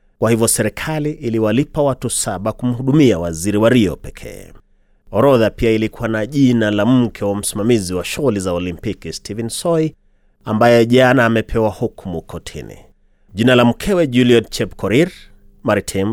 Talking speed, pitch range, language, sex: 140 wpm, 100-125 Hz, Swahili, male